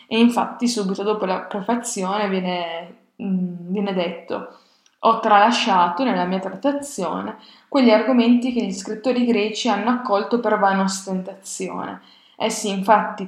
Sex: female